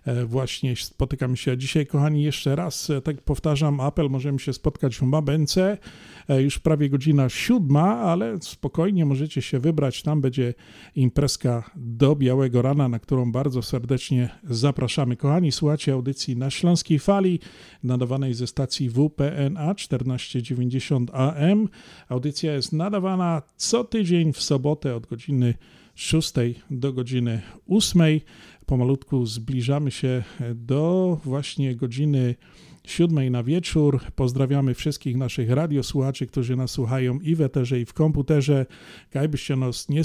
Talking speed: 125 wpm